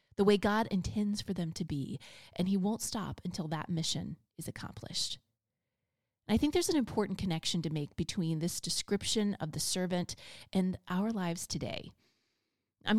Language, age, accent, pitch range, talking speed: English, 30-49, American, 170-220 Hz, 165 wpm